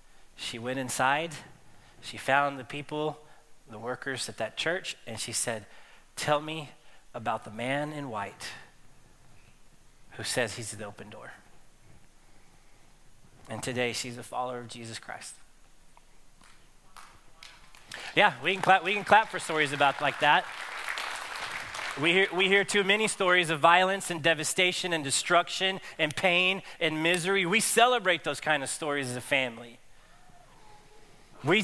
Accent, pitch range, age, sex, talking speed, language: American, 140-190 Hz, 30-49, male, 135 wpm, English